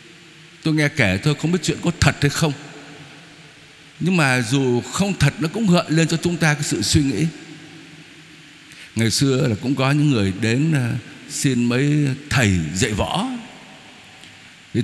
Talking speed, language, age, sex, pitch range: 165 wpm, Vietnamese, 60-79, male, 120-165 Hz